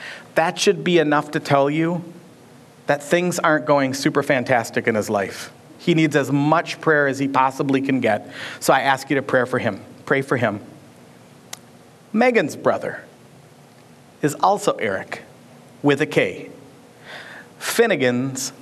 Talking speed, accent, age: 150 wpm, American, 40-59